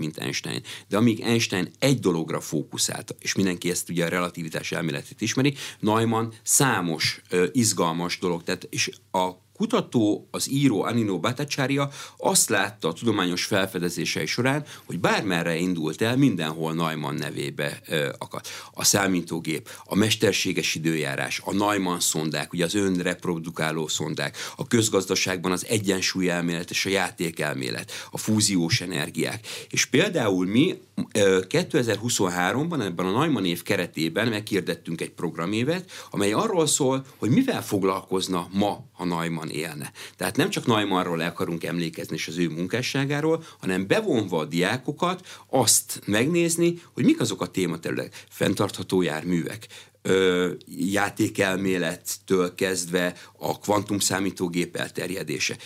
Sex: male